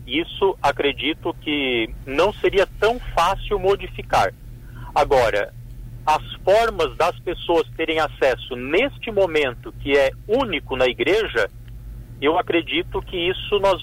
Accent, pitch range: Brazilian, 120-180 Hz